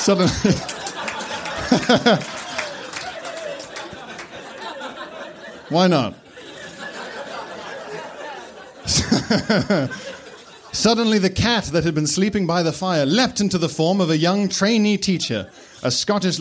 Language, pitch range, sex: English, 155-225 Hz, male